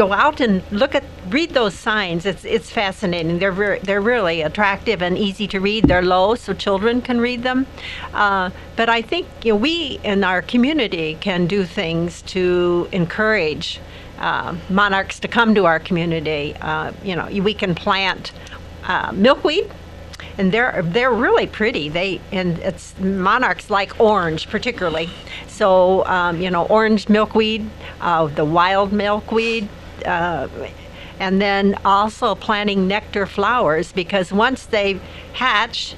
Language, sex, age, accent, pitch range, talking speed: English, female, 60-79, American, 175-215 Hz, 150 wpm